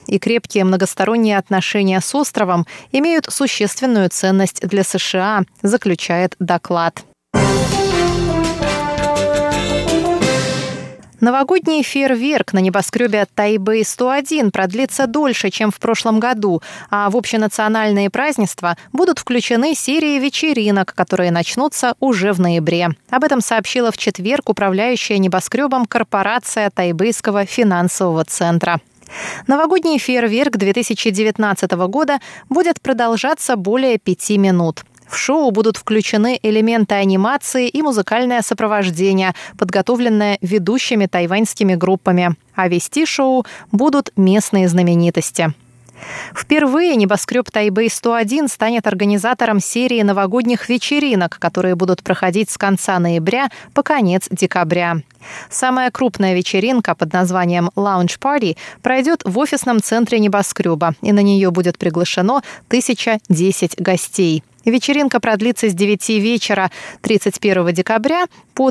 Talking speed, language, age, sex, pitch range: 105 wpm, Russian, 20-39, female, 185-250 Hz